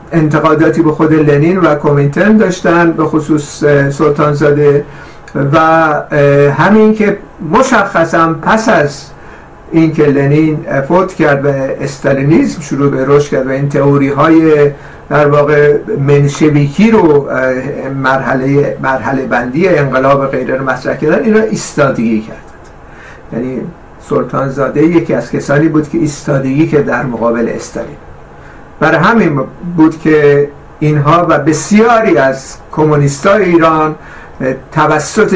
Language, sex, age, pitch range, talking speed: Persian, male, 60-79, 140-165 Hz, 115 wpm